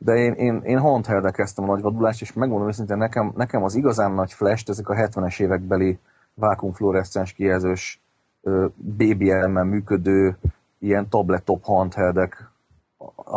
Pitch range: 95-105 Hz